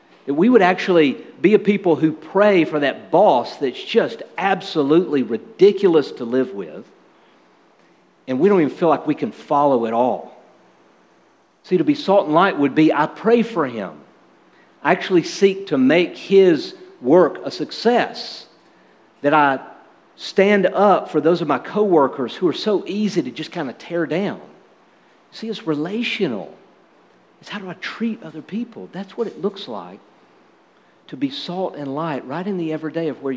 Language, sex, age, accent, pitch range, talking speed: English, male, 50-69, American, 140-205 Hz, 175 wpm